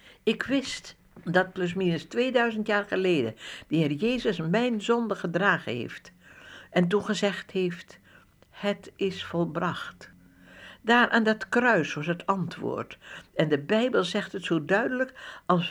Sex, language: female, Dutch